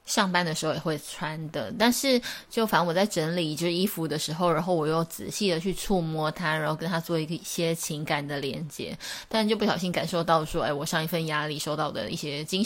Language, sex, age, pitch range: Chinese, female, 20-39, 160-200 Hz